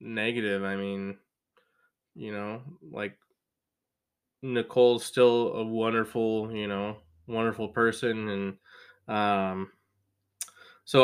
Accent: American